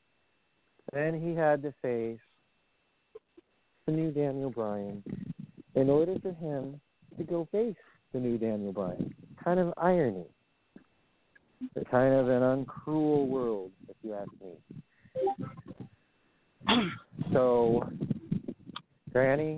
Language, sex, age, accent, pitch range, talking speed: English, male, 40-59, American, 120-155 Hz, 105 wpm